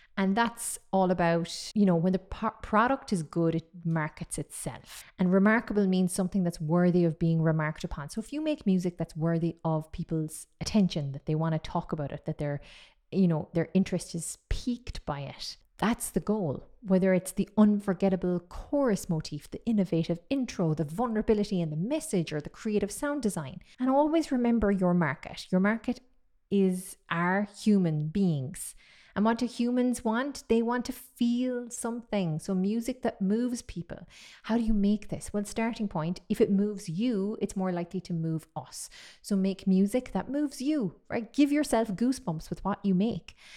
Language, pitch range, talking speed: English, 165-225 Hz, 180 wpm